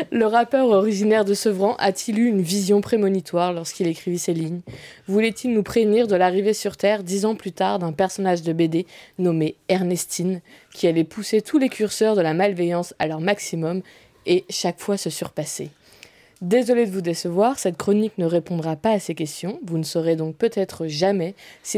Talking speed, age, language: 185 wpm, 20-39, French